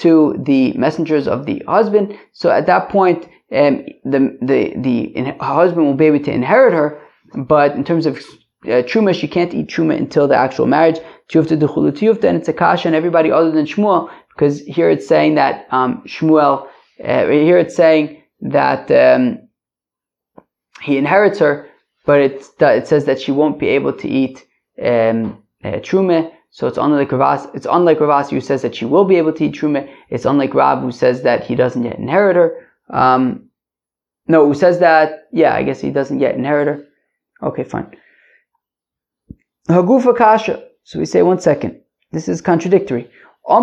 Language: English